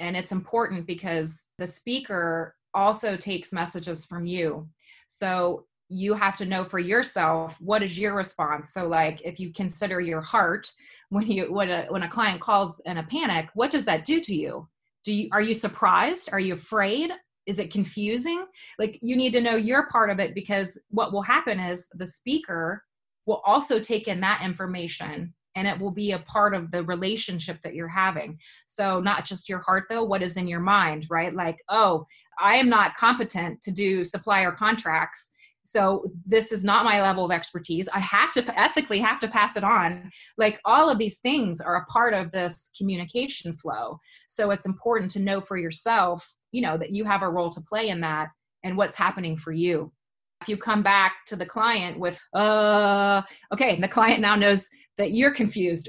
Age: 30-49